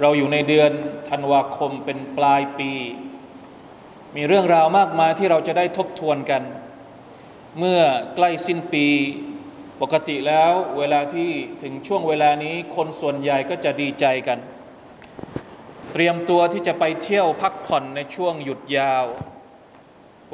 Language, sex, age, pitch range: Thai, male, 20-39, 145-185 Hz